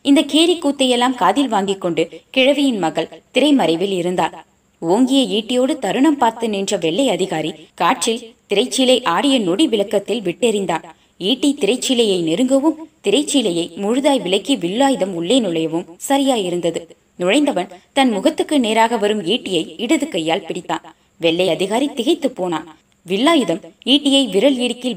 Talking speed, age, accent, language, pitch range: 120 wpm, 20-39, native, Tamil, 175-270 Hz